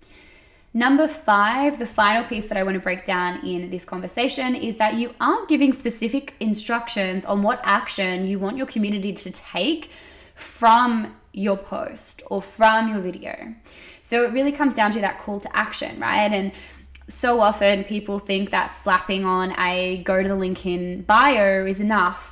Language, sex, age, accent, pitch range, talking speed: English, female, 10-29, Australian, 185-235 Hz, 175 wpm